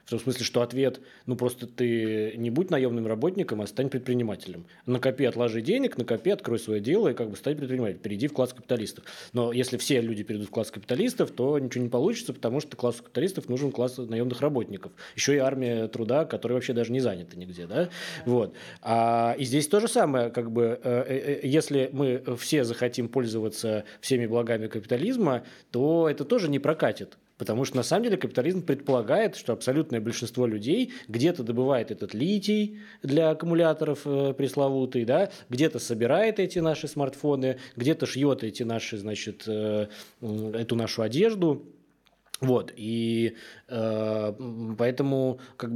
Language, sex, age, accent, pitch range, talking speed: Russian, male, 20-39, native, 115-140 Hz, 160 wpm